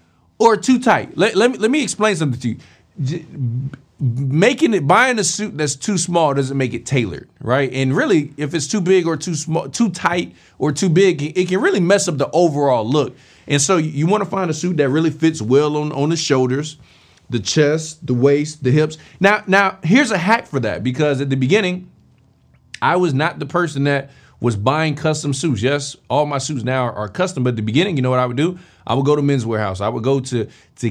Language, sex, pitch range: English, male, 130-175 Hz